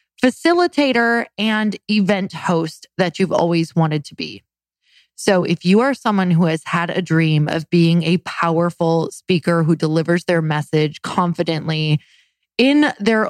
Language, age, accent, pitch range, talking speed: English, 20-39, American, 170-220 Hz, 145 wpm